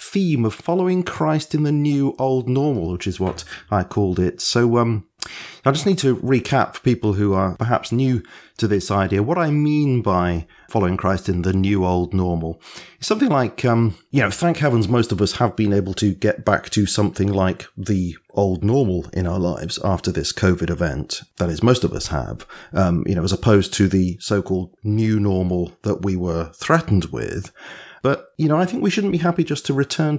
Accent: British